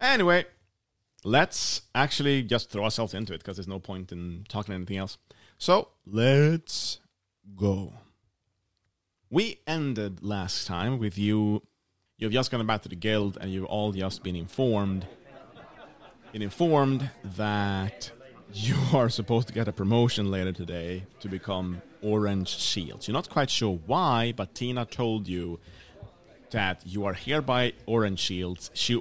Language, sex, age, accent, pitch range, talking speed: English, male, 30-49, Norwegian, 100-125 Hz, 145 wpm